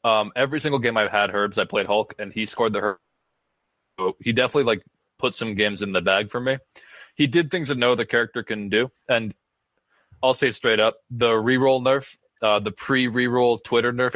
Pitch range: 110-135 Hz